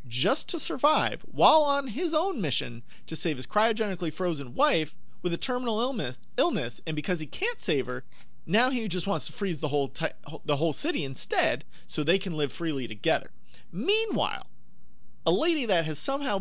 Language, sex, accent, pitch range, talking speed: English, male, American, 155-245 Hz, 175 wpm